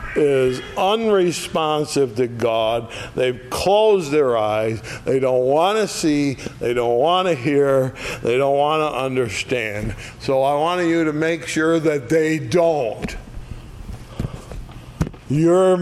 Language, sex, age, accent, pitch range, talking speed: English, male, 60-79, American, 120-155 Hz, 130 wpm